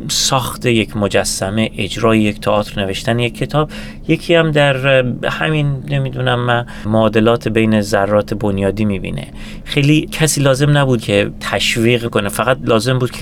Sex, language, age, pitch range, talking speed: male, Persian, 30-49, 100-120 Hz, 145 wpm